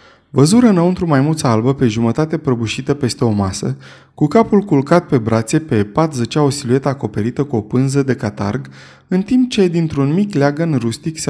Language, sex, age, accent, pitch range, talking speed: Romanian, male, 20-39, native, 115-150 Hz, 180 wpm